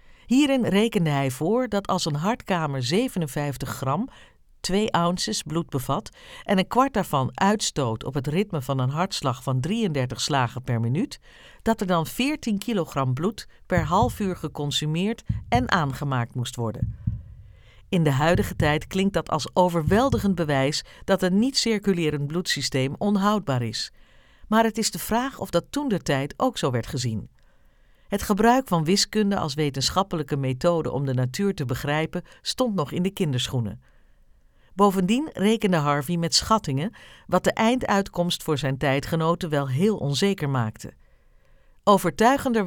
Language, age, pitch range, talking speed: Dutch, 50-69, 140-205 Hz, 150 wpm